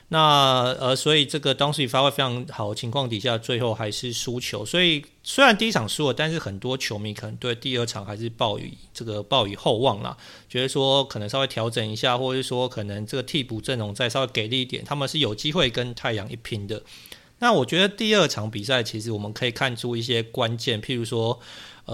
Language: Chinese